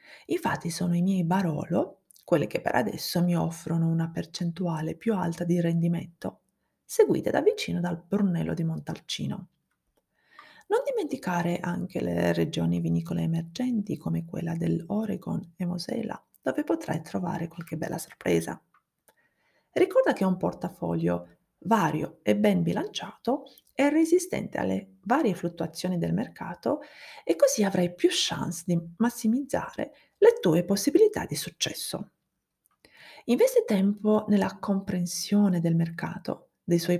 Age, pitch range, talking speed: 30-49, 170-250 Hz, 125 wpm